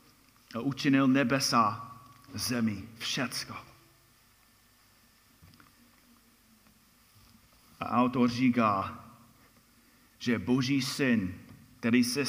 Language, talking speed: Czech, 65 wpm